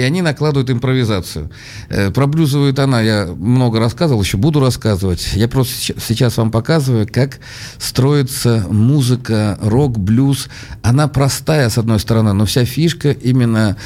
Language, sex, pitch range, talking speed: Russian, male, 105-125 Hz, 135 wpm